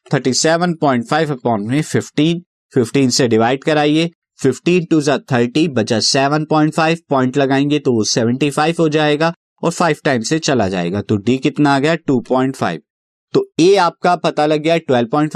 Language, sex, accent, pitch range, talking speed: Hindi, male, native, 130-170 Hz, 150 wpm